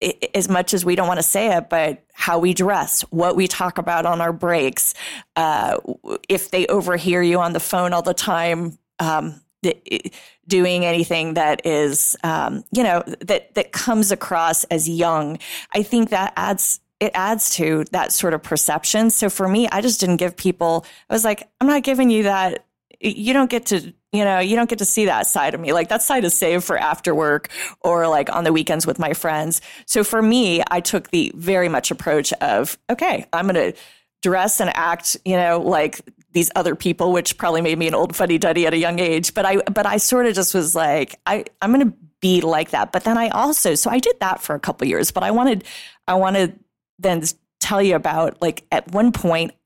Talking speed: 220 wpm